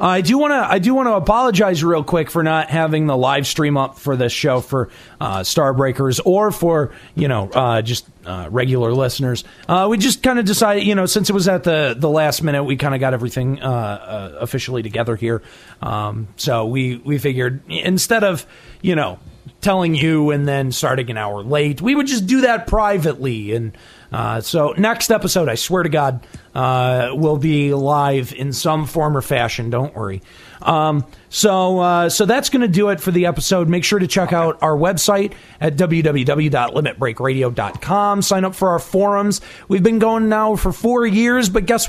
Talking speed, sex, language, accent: 195 wpm, male, English, American